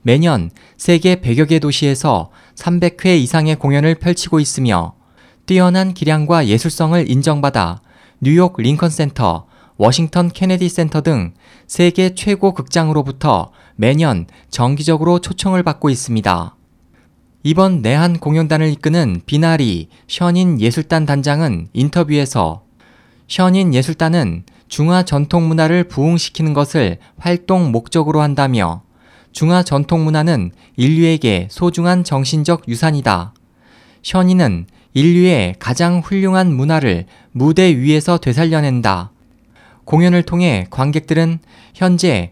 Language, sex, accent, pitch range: Korean, male, native, 120-175 Hz